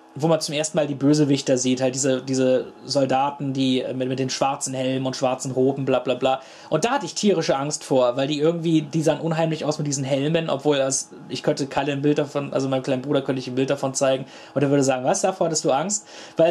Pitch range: 130-160 Hz